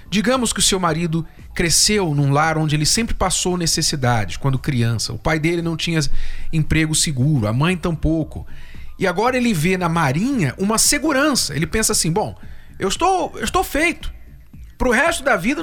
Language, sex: Portuguese, male